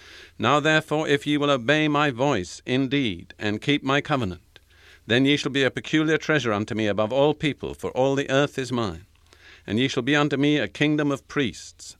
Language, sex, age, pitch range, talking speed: English, male, 50-69, 105-140 Hz, 205 wpm